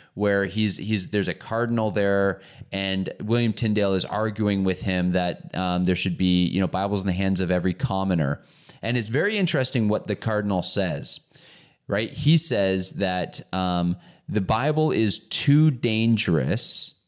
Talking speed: 160 wpm